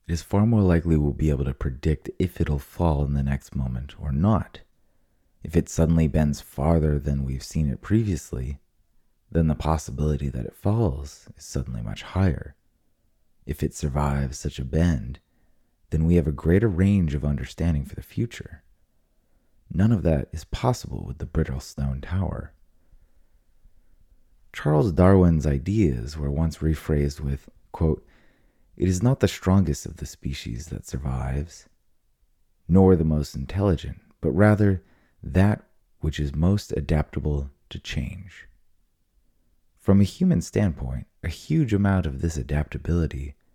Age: 30-49